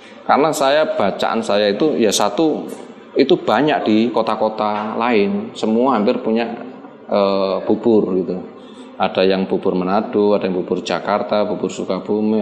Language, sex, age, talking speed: Indonesian, male, 20-39, 135 wpm